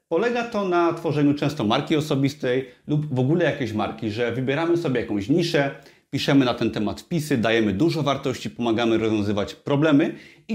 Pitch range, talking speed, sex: 120-155 Hz, 165 wpm, male